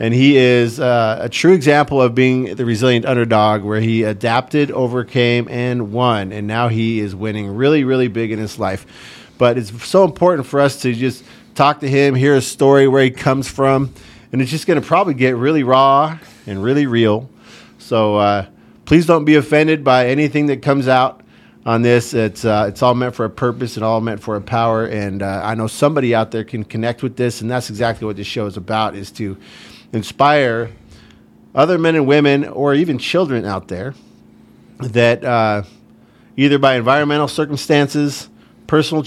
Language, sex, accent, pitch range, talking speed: English, male, American, 110-135 Hz, 190 wpm